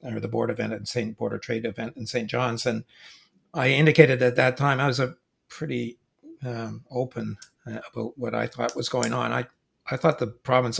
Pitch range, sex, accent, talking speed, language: 120-140 Hz, male, American, 205 wpm, English